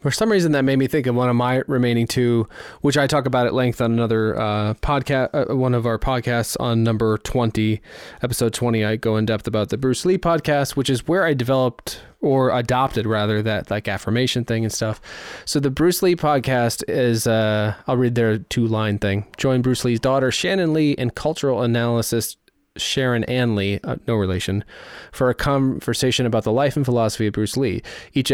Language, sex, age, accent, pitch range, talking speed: English, male, 20-39, American, 110-130 Hz, 205 wpm